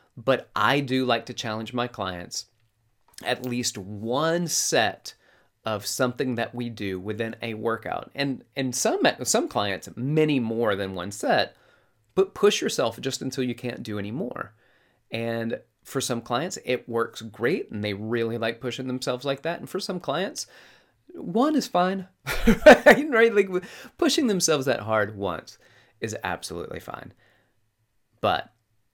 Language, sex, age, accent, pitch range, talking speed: English, male, 30-49, American, 110-150 Hz, 150 wpm